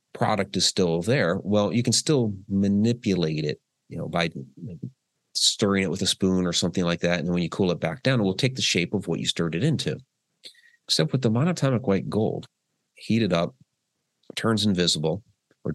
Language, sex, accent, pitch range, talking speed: English, male, American, 85-110 Hz, 200 wpm